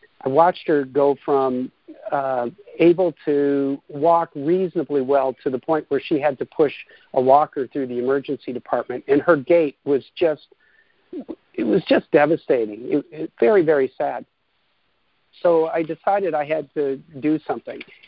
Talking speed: 150 wpm